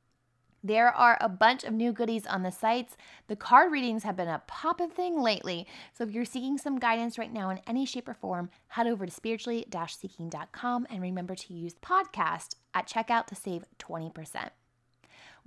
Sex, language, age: female, English, 20-39